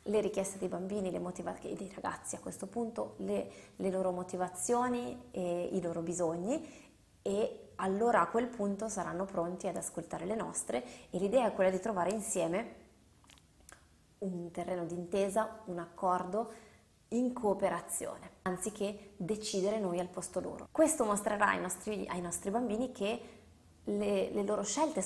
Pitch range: 180-220 Hz